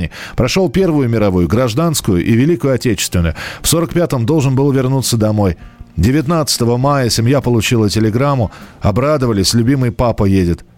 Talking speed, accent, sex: 130 wpm, native, male